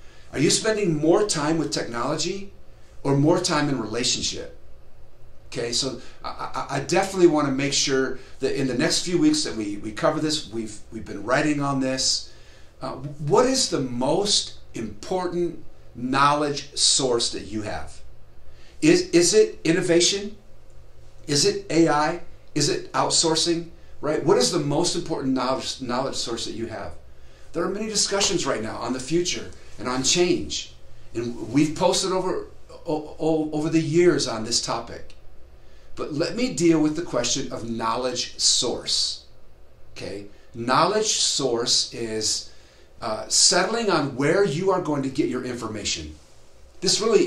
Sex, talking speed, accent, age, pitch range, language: male, 155 wpm, American, 50-69, 110-170 Hz, English